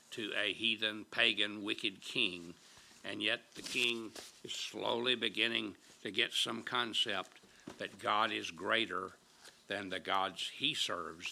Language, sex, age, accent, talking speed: English, male, 60-79, American, 140 wpm